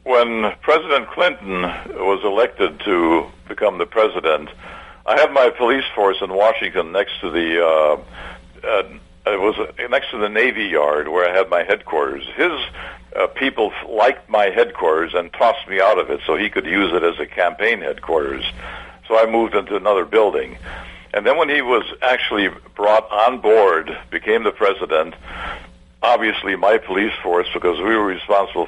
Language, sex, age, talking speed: English, male, 60-79, 165 wpm